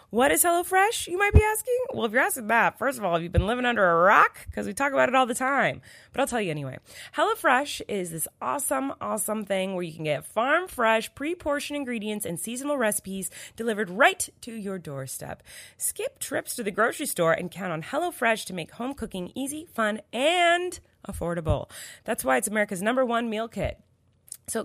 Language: English